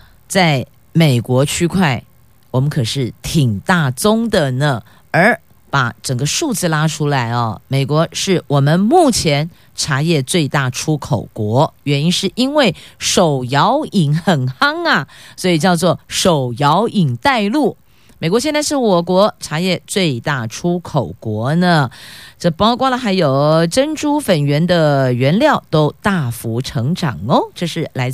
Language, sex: Chinese, female